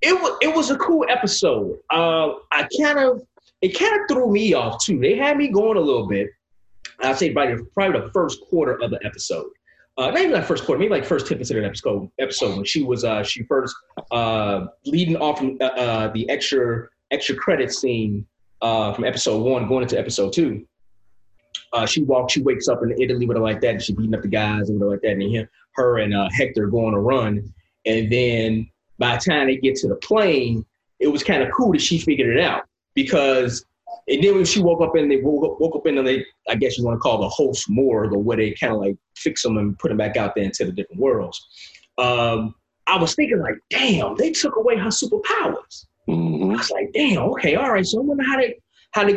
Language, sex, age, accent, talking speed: English, male, 30-49, American, 235 wpm